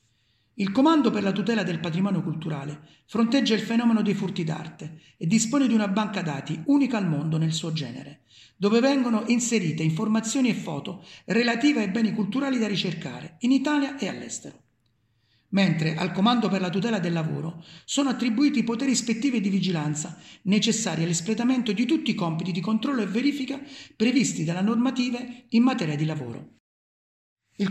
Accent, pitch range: native, 165-230 Hz